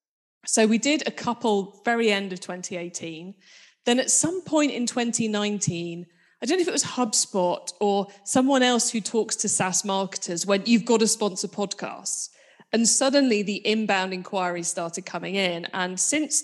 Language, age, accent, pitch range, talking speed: English, 20-39, British, 185-225 Hz, 170 wpm